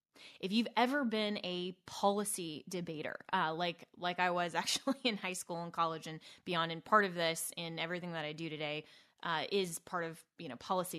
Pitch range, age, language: 170-210 Hz, 20-39, English